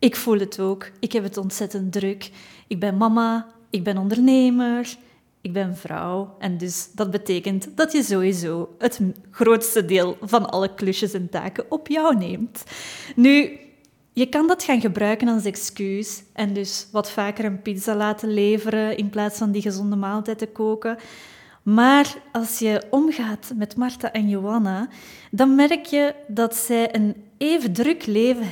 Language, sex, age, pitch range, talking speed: Dutch, female, 20-39, 200-250 Hz, 160 wpm